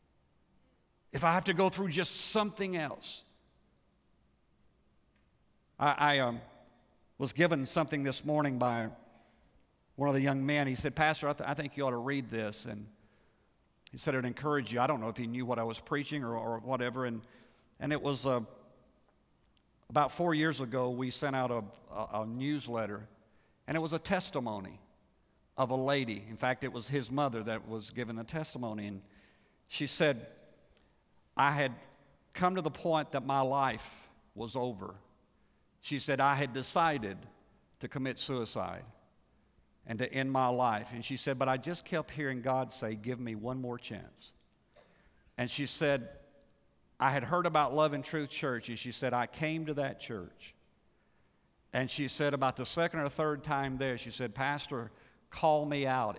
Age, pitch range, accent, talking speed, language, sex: 50-69, 115-145 Hz, American, 180 wpm, English, male